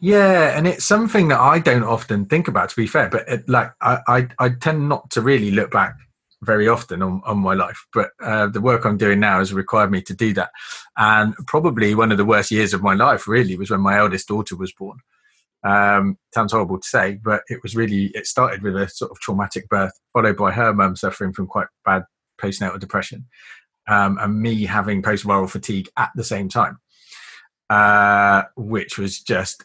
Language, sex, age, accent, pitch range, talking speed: English, male, 20-39, British, 95-120 Hz, 210 wpm